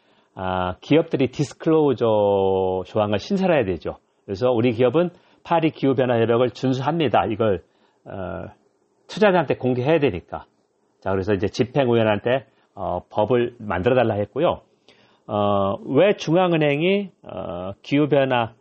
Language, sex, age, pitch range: Korean, male, 40-59, 110-145 Hz